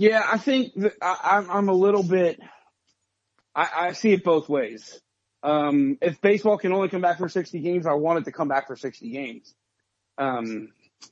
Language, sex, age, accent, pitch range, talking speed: English, male, 30-49, American, 135-175 Hz, 180 wpm